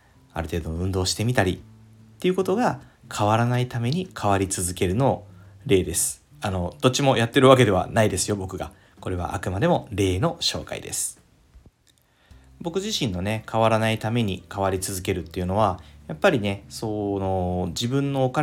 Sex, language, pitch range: male, Japanese, 95-120 Hz